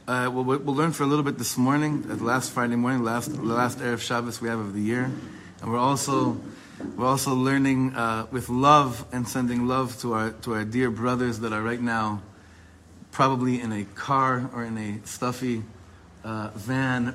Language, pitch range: English, 110-135 Hz